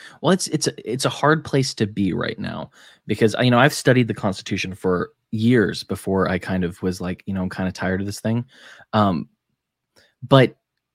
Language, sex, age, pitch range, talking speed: English, male, 20-39, 100-120 Hz, 215 wpm